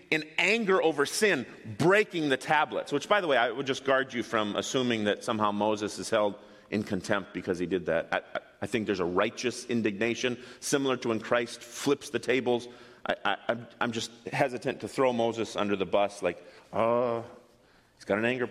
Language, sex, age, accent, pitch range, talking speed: English, male, 40-59, American, 120-170 Hz, 195 wpm